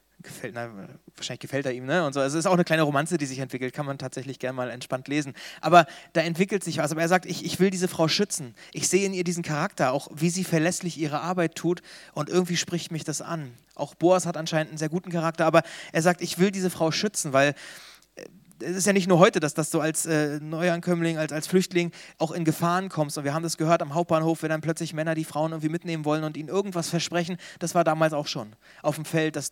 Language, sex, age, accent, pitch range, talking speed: German, male, 30-49, German, 145-170 Hz, 250 wpm